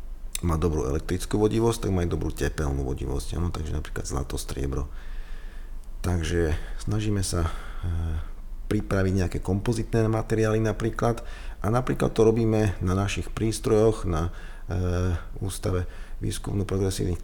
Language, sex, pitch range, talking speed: Slovak, male, 85-100 Hz, 120 wpm